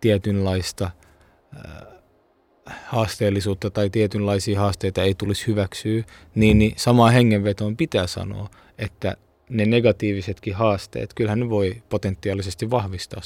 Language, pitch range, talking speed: Finnish, 95-110 Hz, 110 wpm